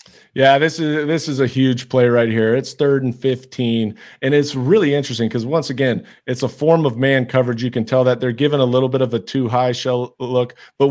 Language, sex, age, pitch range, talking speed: English, male, 40-59, 125-140 Hz, 235 wpm